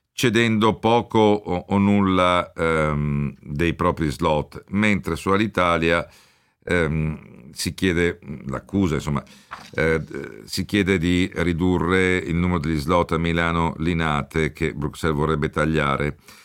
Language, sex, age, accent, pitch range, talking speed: Italian, male, 50-69, native, 75-95 Hz, 120 wpm